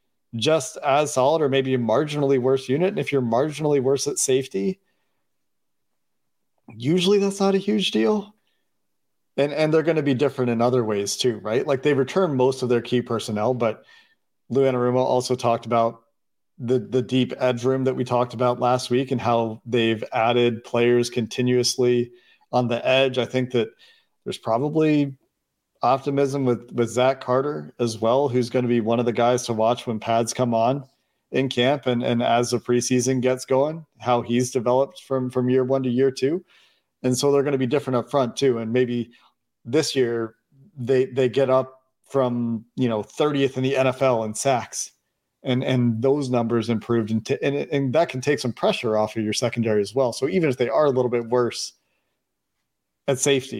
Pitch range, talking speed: 120-135 Hz, 190 wpm